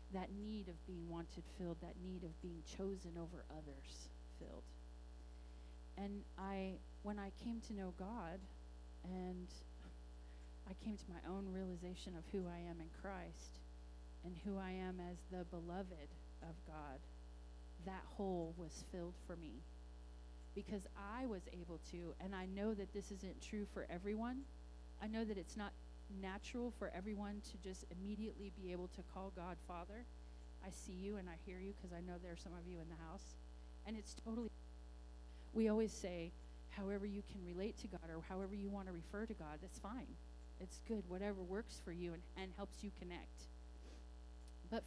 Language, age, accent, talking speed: English, 30-49, American, 180 wpm